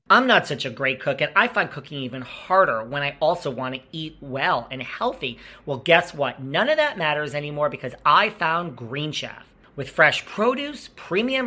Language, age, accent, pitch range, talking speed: English, 40-59, American, 140-205 Hz, 200 wpm